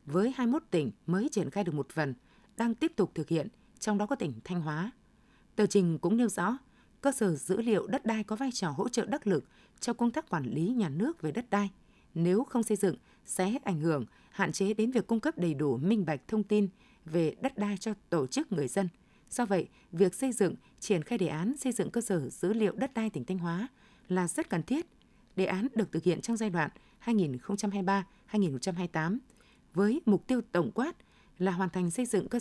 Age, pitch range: 20-39, 175-230 Hz